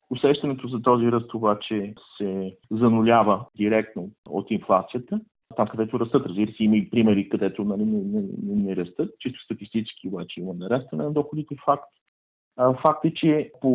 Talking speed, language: 155 wpm, Bulgarian